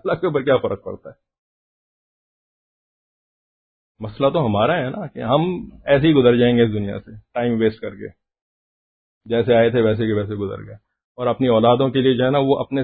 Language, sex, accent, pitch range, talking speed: English, male, Indian, 110-140 Hz, 200 wpm